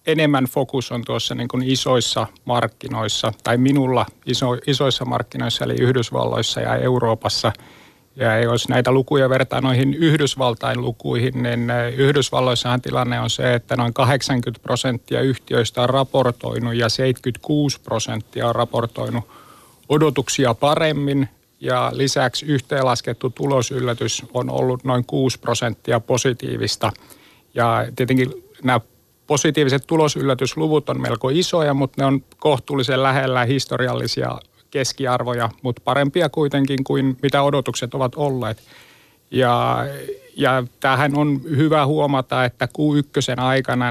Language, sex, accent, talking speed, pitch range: Finnish, male, native, 115 wpm, 120-140 Hz